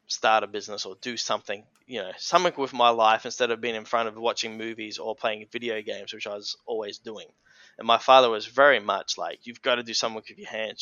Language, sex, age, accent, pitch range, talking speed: English, male, 10-29, Australian, 110-135 Hz, 245 wpm